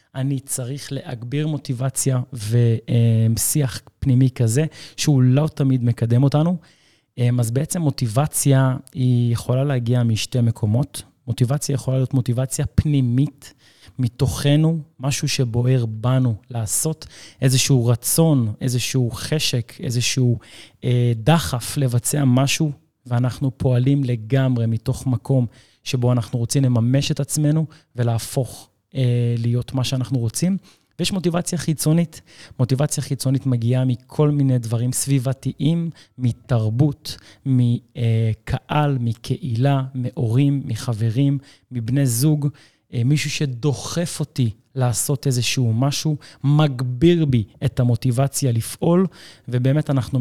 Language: Hebrew